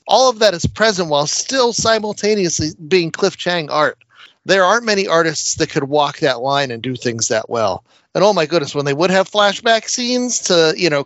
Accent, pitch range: American, 155-205 Hz